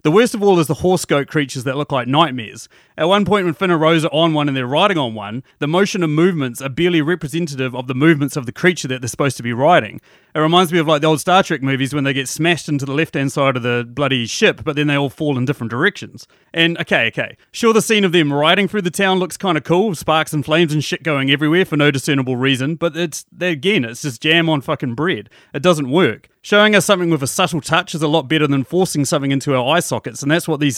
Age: 30-49